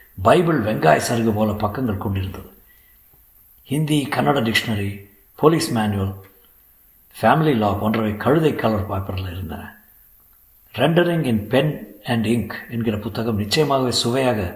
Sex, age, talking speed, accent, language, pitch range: male, 50-69, 85 wpm, native, Tamil, 100-130 Hz